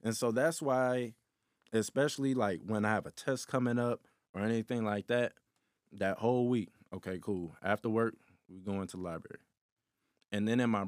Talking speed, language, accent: 180 wpm, English, American